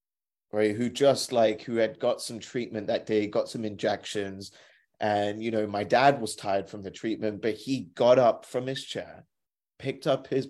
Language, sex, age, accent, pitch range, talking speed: English, male, 30-49, British, 105-130 Hz, 195 wpm